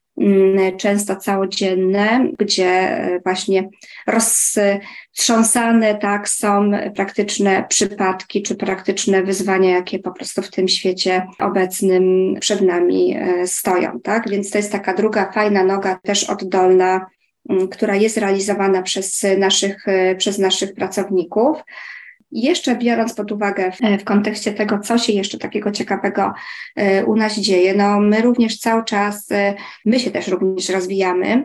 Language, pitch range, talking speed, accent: Polish, 195-220 Hz, 125 wpm, native